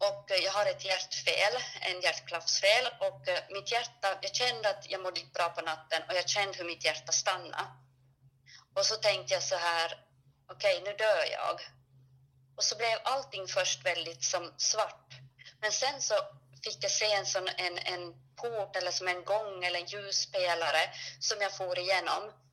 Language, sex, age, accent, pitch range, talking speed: Swedish, female, 30-49, native, 165-210 Hz, 175 wpm